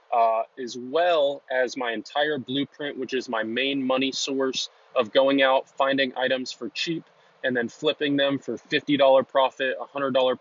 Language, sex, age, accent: English, male, 20-39, American